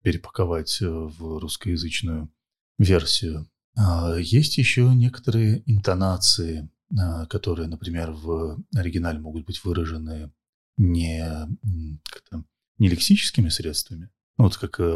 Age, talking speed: 30-49, 85 wpm